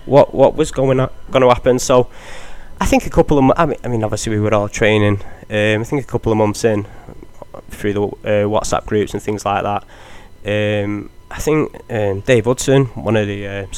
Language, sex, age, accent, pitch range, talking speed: English, male, 20-39, British, 100-110 Hz, 220 wpm